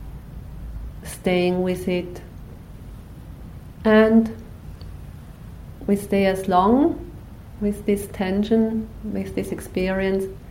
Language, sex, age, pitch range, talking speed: English, female, 40-59, 140-195 Hz, 80 wpm